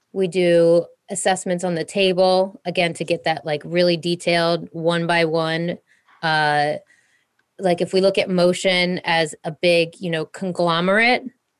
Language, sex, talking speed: English, female, 150 wpm